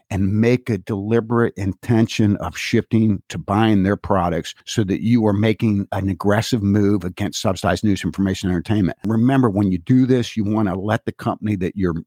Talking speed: 185 wpm